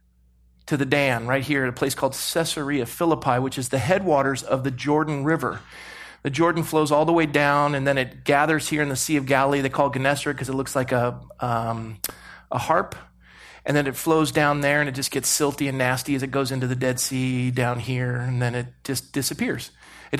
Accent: American